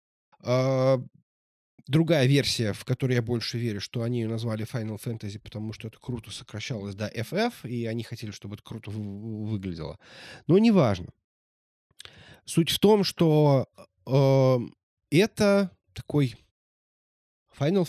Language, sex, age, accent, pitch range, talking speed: Russian, male, 20-39, native, 110-150 Hz, 120 wpm